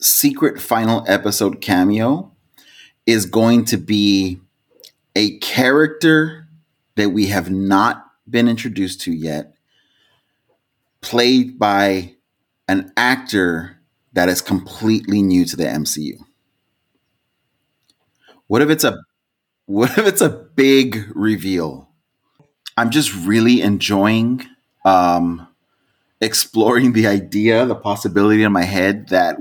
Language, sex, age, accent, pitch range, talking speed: English, male, 30-49, American, 95-120 Hz, 110 wpm